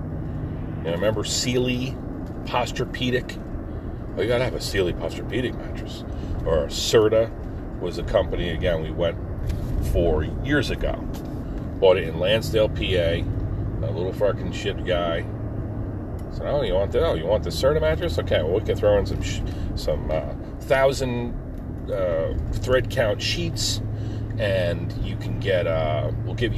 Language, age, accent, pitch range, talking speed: English, 40-59, American, 100-115 Hz, 150 wpm